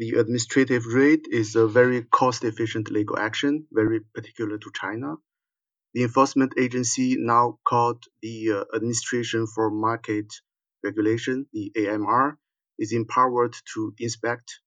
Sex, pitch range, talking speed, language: male, 110-135 Hz, 120 wpm, English